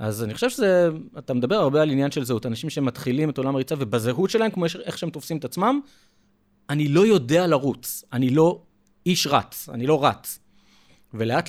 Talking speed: 190 wpm